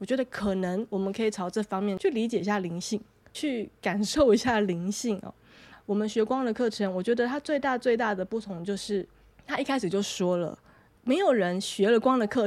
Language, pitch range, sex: Chinese, 190-235 Hz, female